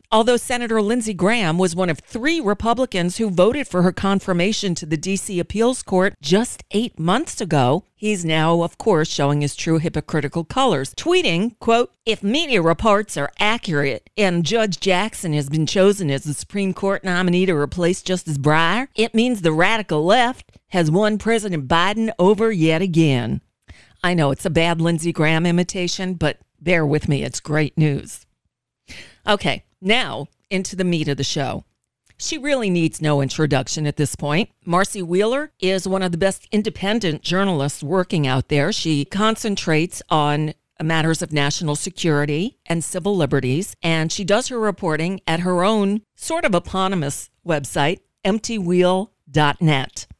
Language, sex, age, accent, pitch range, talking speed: English, female, 50-69, American, 155-210 Hz, 160 wpm